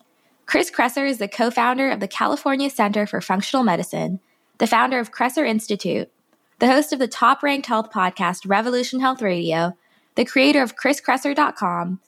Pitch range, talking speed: 195-255 Hz, 155 wpm